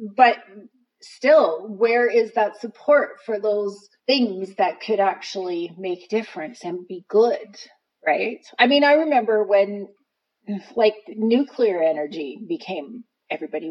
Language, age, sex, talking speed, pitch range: English, 30-49, female, 125 wpm, 195-250 Hz